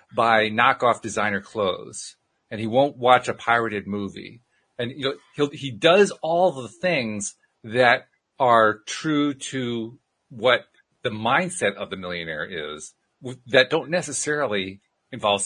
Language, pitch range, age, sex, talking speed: English, 110-150 Hz, 40-59, male, 135 wpm